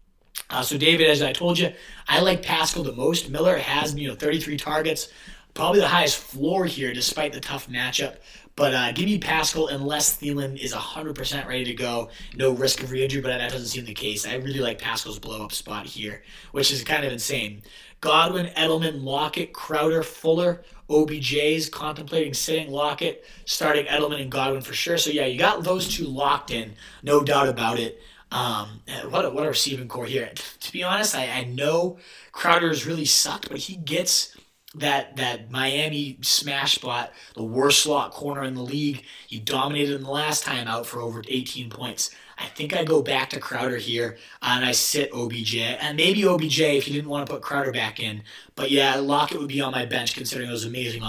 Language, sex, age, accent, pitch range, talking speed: English, male, 30-49, American, 125-155 Hz, 195 wpm